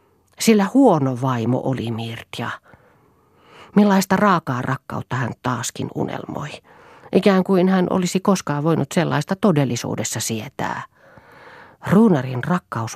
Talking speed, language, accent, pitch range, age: 100 wpm, Finnish, native, 130-175 Hz, 40-59